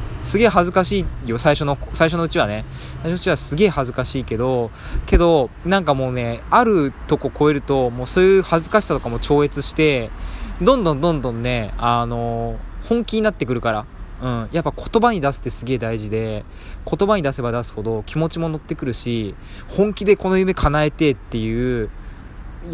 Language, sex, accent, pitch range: Japanese, male, native, 110-155 Hz